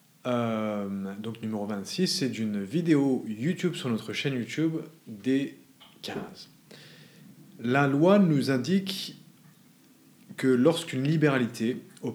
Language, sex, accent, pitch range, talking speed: English, male, French, 120-160 Hz, 110 wpm